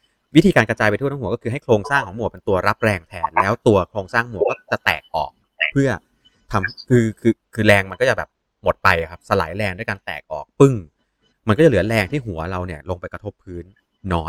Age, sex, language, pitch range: 30-49, male, Thai, 95-125 Hz